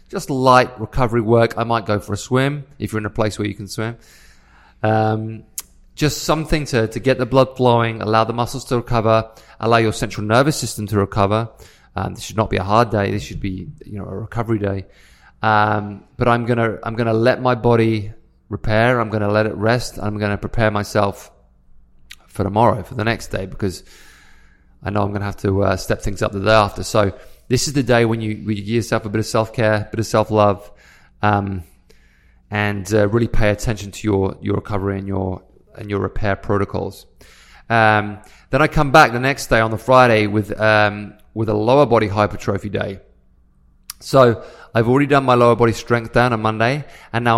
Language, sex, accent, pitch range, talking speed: English, male, British, 105-120 Hz, 210 wpm